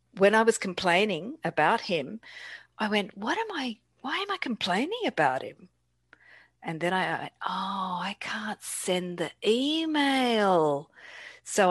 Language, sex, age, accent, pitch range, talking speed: English, female, 50-69, Australian, 150-205 Hz, 145 wpm